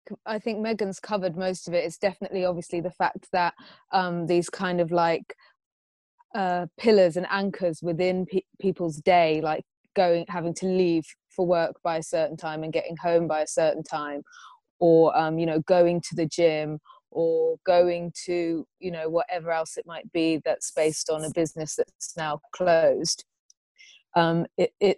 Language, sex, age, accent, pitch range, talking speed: English, female, 20-39, British, 165-190 Hz, 175 wpm